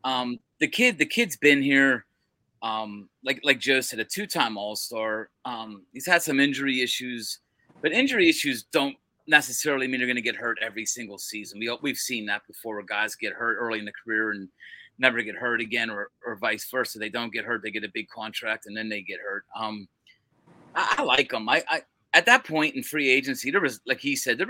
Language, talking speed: English, 230 wpm